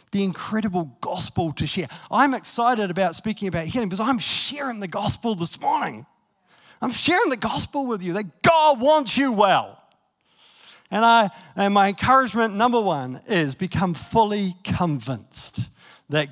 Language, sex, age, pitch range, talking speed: English, male, 40-59, 135-195 Hz, 150 wpm